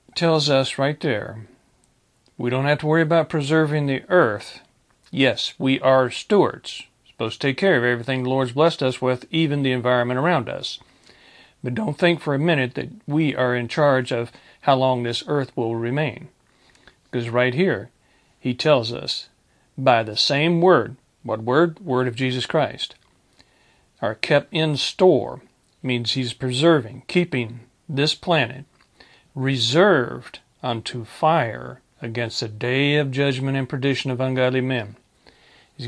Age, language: 40-59, English